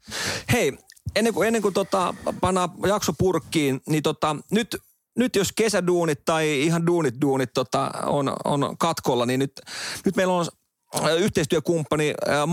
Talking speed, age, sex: 140 wpm, 40-59, male